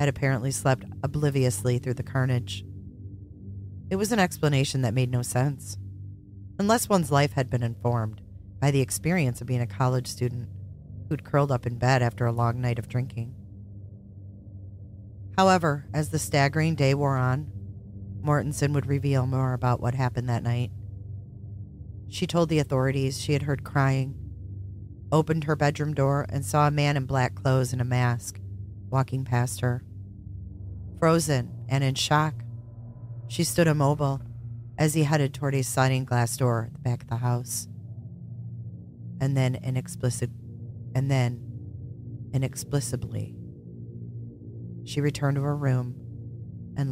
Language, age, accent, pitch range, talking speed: English, 40-59, American, 115-140 Hz, 145 wpm